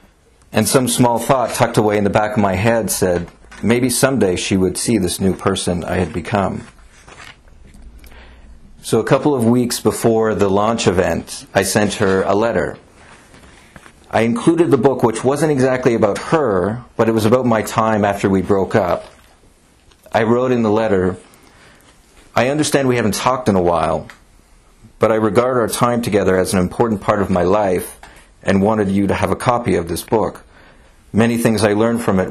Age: 50-69